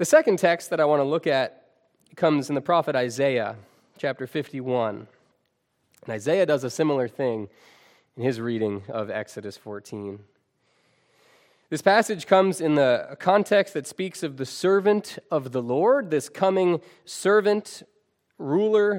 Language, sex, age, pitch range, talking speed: English, male, 20-39, 140-195 Hz, 145 wpm